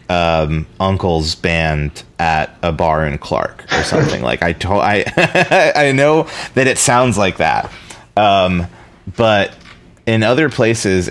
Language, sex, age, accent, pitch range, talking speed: English, male, 30-49, American, 80-95 Hz, 135 wpm